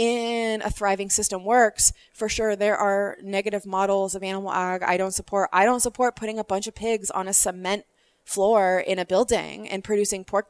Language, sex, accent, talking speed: English, female, American, 200 wpm